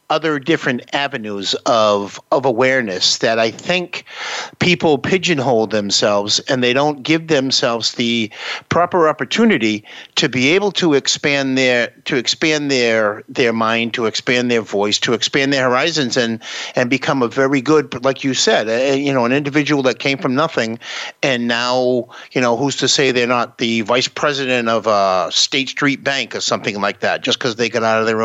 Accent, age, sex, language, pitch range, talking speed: American, 50-69, male, English, 115-145 Hz, 185 wpm